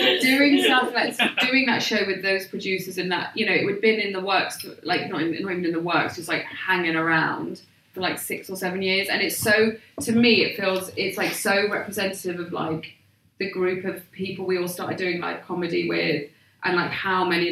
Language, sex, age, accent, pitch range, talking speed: English, female, 20-39, British, 175-210 Hz, 225 wpm